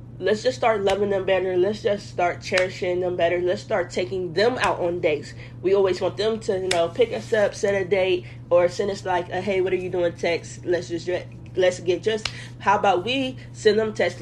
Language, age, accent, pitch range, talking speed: English, 20-39, American, 160-205 Hz, 230 wpm